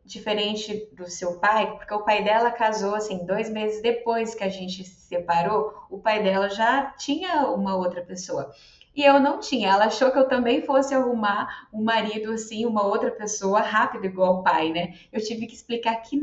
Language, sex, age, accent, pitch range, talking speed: Portuguese, female, 20-39, Brazilian, 185-255 Hz, 195 wpm